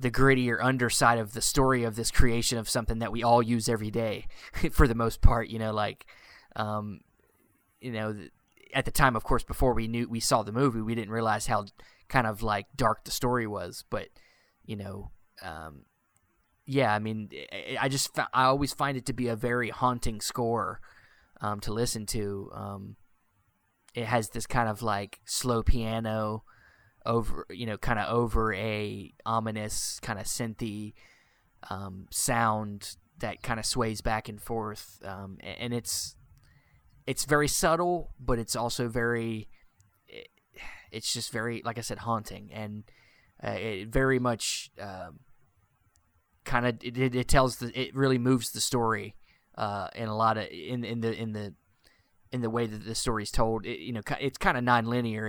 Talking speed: 175 wpm